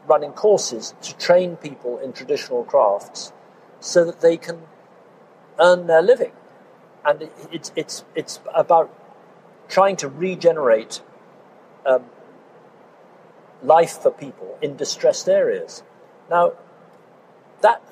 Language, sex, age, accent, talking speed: English, male, 50-69, British, 105 wpm